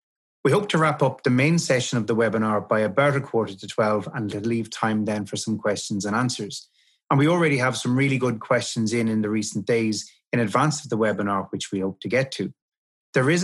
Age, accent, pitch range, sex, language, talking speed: 30-49, Irish, 110-140 Hz, male, English, 235 wpm